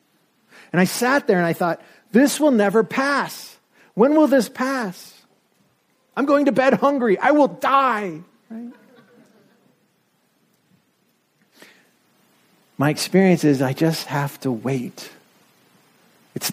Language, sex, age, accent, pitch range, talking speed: English, male, 50-69, American, 175-235 Hz, 120 wpm